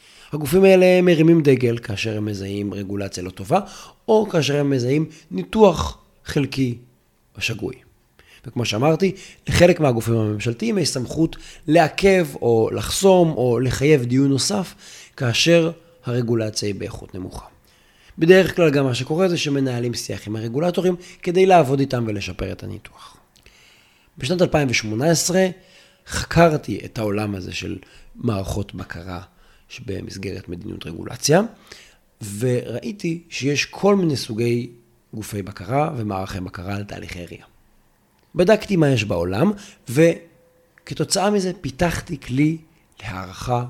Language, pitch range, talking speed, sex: Hebrew, 105-165 Hz, 115 wpm, male